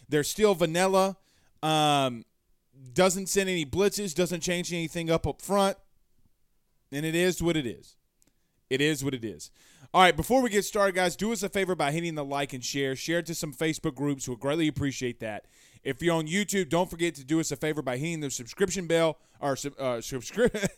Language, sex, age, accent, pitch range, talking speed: English, male, 20-39, American, 135-175 Hz, 205 wpm